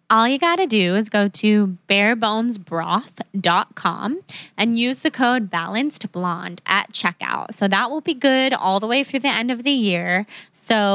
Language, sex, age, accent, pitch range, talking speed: English, female, 20-39, American, 190-240 Hz, 170 wpm